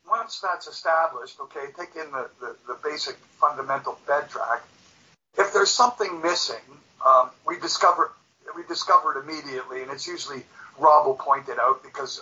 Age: 50-69